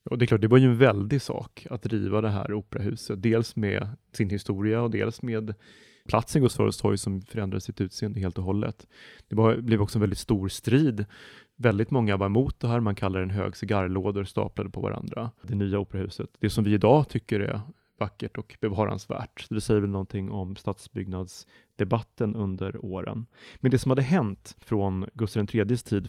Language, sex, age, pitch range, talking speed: Swedish, male, 30-49, 100-115 Hz, 185 wpm